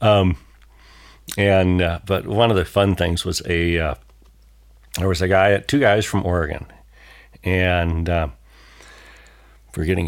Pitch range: 80-100 Hz